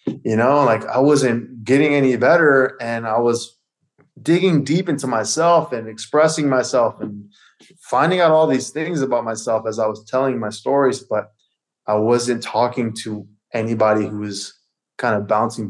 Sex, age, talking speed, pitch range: male, 20-39, 165 wpm, 105-130 Hz